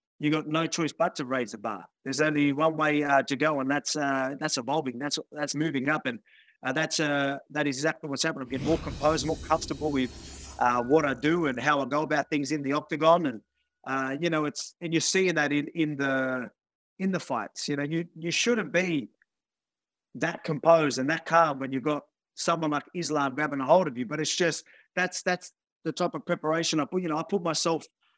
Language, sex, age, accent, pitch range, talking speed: English, male, 30-49, Australian, 140-165 Hz, 230 wpm